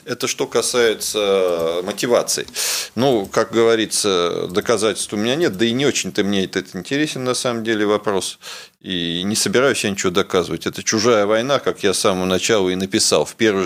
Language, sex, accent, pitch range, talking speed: Russian, male, native, 95-130 Hz, 180 wpm